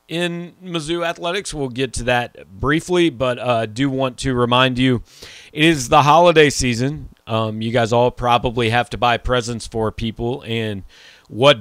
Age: 40-59